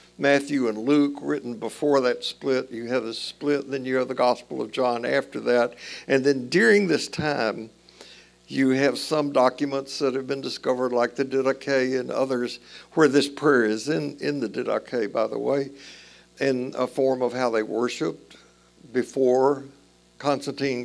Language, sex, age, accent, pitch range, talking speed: English, male, 60-79, American, 105-140 Hz, 165 wpm